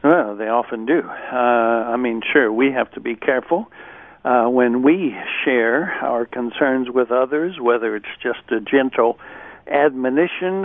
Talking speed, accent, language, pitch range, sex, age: 145 wpm, American, English, 120-150 Hz, male, 60-79